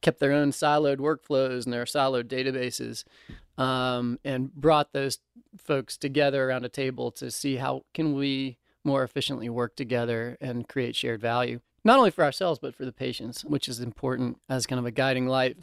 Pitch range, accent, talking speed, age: 130-150 Hz, American, 185 wpm, 30-49